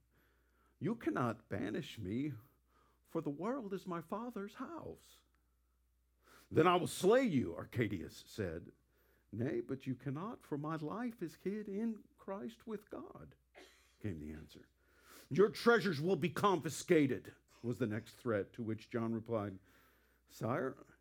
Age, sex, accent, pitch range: 50-69, male, American, 105-165 Hz